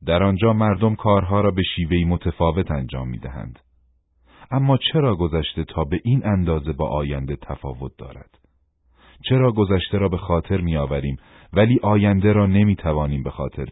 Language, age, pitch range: Persian, 40-59, 75-115 Hz